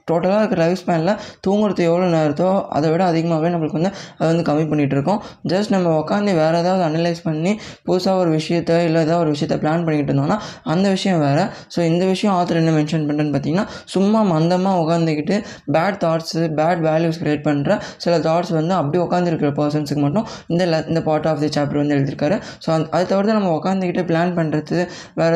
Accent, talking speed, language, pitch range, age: native, 180 wpm, Tamil, 155-185 Hz, 20-39